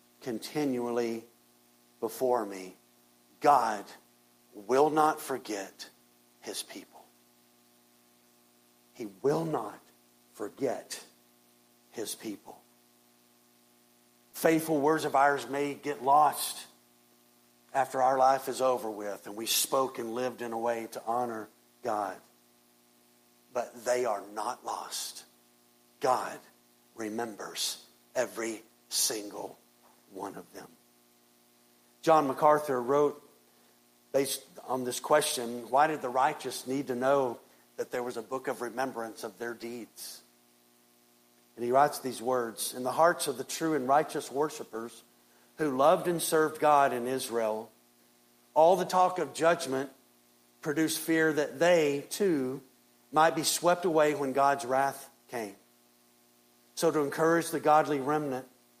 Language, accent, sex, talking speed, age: English, American, male, 120 wpm, 50-69